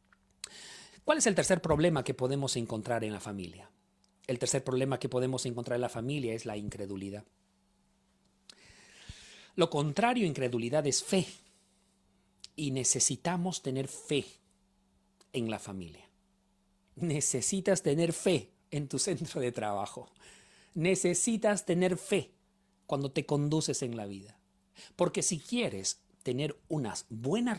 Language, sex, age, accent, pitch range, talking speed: Spanish, male, 40-59, Mexican, 110-175 Hz, 130 wpm